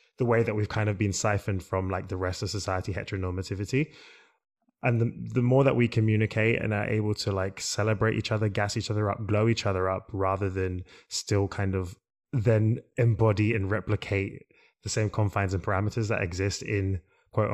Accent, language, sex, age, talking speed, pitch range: British, English, male, 20-39, 190 wpm, 95-115 Hz